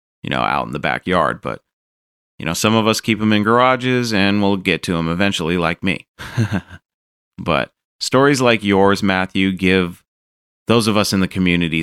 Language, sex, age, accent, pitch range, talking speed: English, male, 30-49, American, 85-105 Hz, 185 wpm